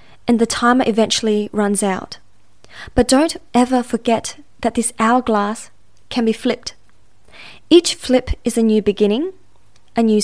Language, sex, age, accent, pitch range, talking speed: English, female, 20-39, Australian, 210-250 Hz, 140 wpm